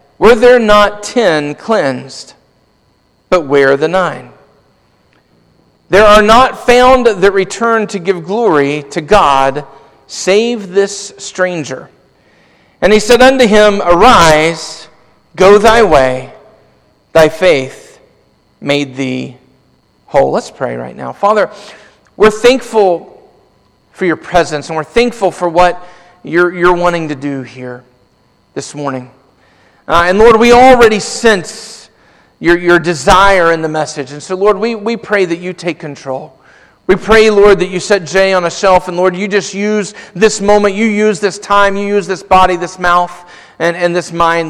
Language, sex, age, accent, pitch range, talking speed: English, male, 40-59, American, 155-210 Hz, 150 wpm